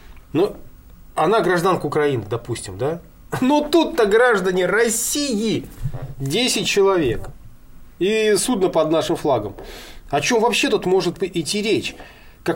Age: 20-39